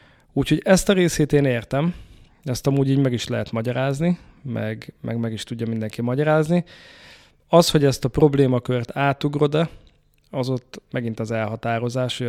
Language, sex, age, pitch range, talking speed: Hungarian, male, 20-39, 115-135 Hz, 160 wpm